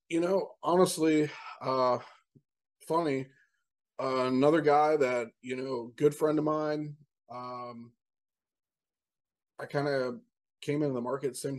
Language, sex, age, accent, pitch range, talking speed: English, male, 20-39, American, 130-160 Hz, 130 wpm